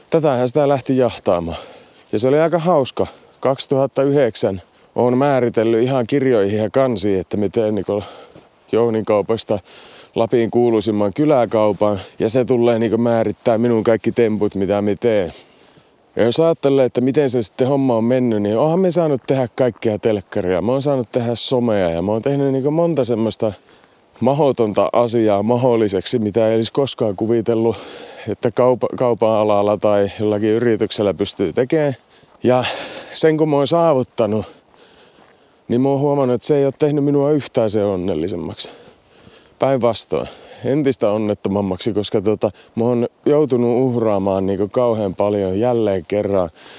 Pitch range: 105-130 Hz